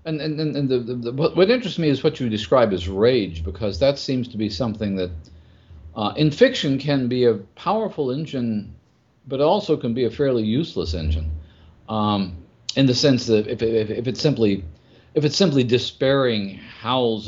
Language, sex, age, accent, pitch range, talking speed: English, male, 50-69, American, 85-130 Hz, 190 wpm